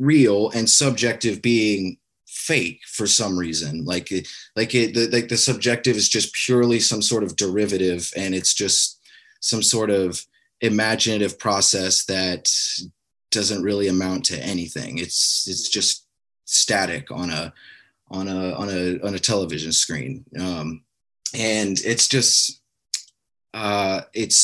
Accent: American